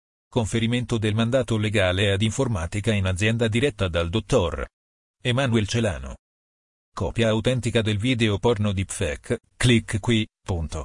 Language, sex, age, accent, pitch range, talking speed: Italian, male, 40-59, native, 100-120 Hz, 120 wpm